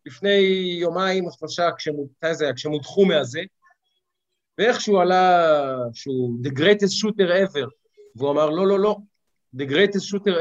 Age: 50-69